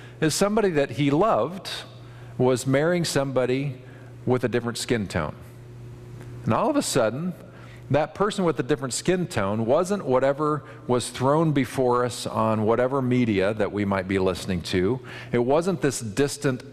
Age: 50-69